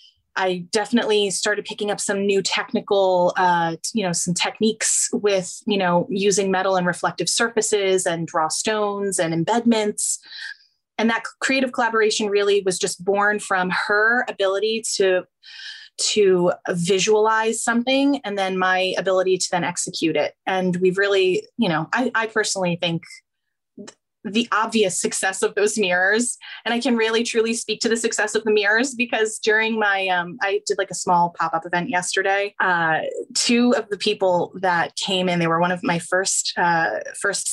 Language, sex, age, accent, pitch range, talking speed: English, female, 20-39, American, 185-225 Hz, 165 wpm